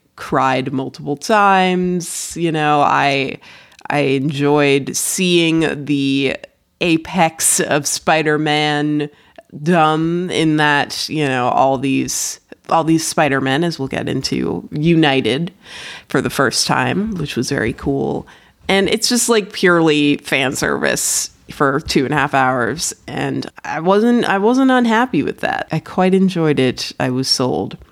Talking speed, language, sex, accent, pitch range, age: 140 wpm, English, female, American, 135-170 Hz, 20-39